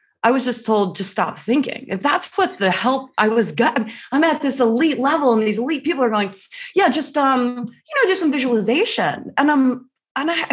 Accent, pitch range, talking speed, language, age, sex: American, 190-275 Hz, 215 wpm, English, 20-39, female